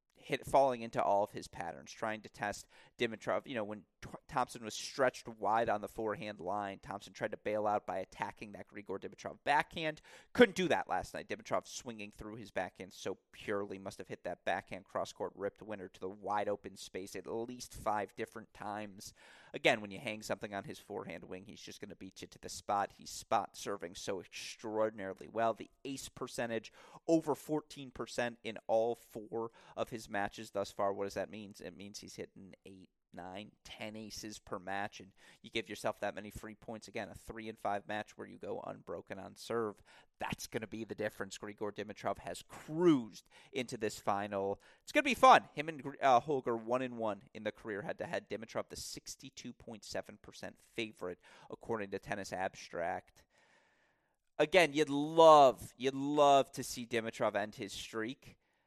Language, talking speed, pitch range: English, 190 wpm, 105-130 Hz